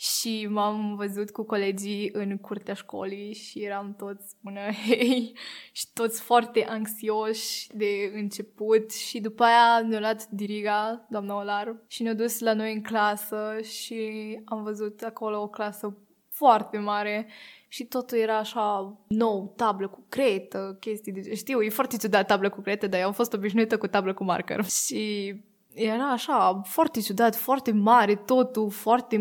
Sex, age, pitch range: female, 20-39, 205-230 Hz